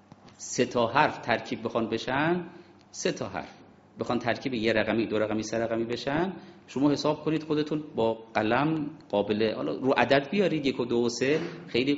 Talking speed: 165 wpm